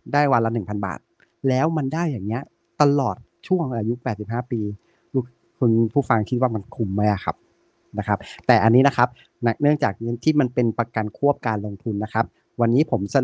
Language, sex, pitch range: Thai, male, 110-140 Hz